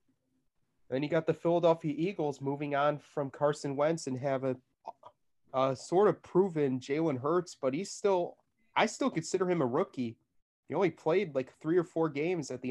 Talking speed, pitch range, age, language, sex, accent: 180 wpm, 130-165 Hz, 30-49, English, male, American